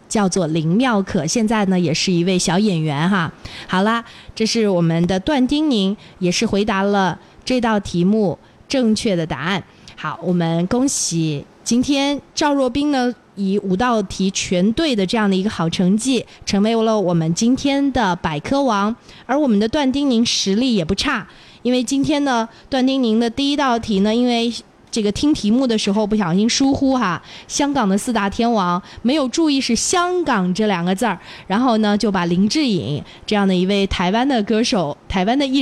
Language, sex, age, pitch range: Chinese, female, 20-39, 190-250 Hz